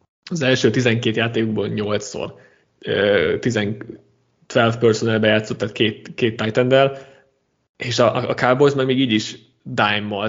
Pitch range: 110-125 Hz